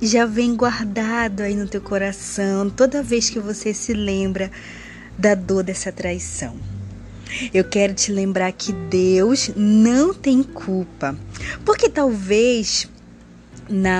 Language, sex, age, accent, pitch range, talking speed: Portuguese, female, 20-39, Brazilian, 180-230 Hz, 125 wpm